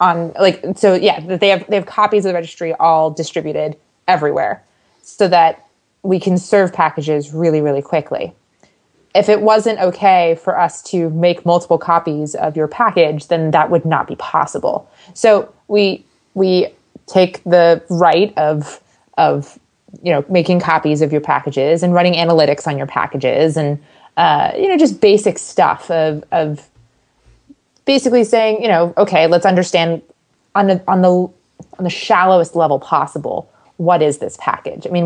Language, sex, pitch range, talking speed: English, female, 160-190 Hz, 165 wpm